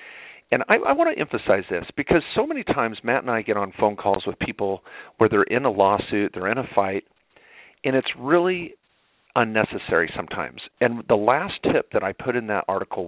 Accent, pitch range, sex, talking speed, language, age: American, 100-125 Hz, male, 200 wpm, English, 40-59